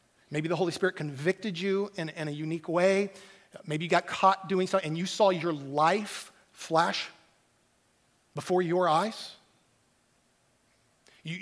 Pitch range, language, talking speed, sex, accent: 155-195 Hz, English, 140 wpm, male, American